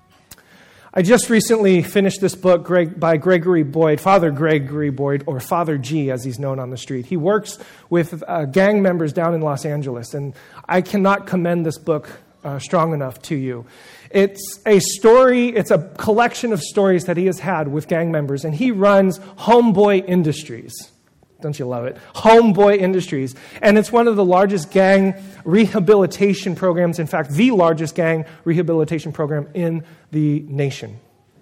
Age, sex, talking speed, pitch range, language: 30-49, male, 160 wpm, 155-200 Hz, English